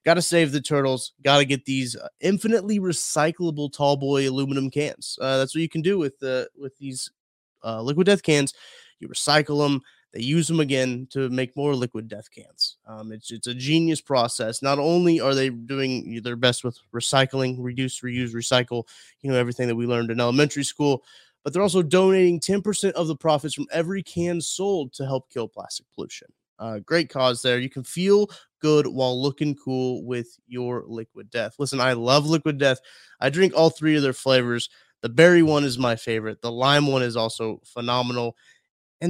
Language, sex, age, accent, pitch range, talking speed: English, male, 20-39, American, 120-155 Hz, 195 wpm